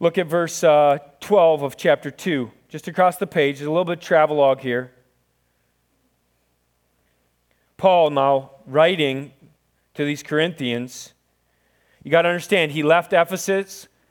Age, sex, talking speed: 30-49, male, 135 wpm